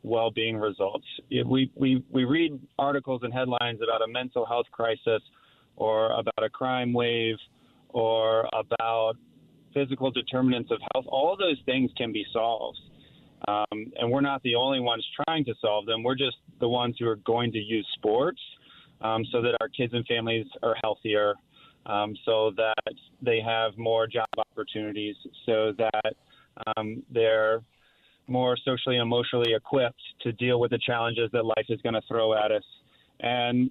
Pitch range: 110-130 Hz